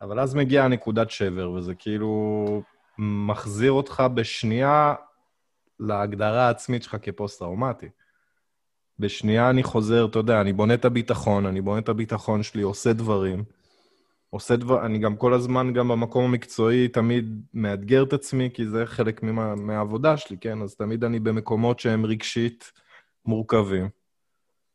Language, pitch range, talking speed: Hebrew, 105-130 Hz, 140 wpm